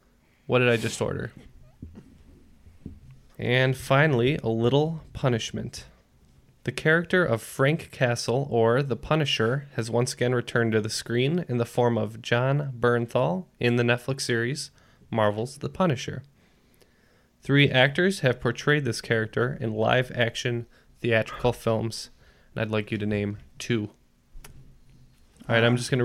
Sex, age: male, 20-39